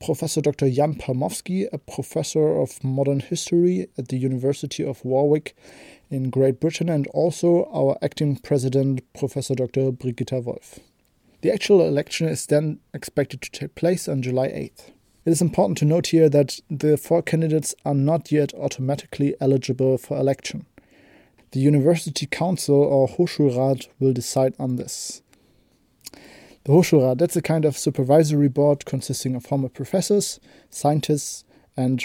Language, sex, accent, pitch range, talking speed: German, male, German, 135-165 Hz, 145 wpm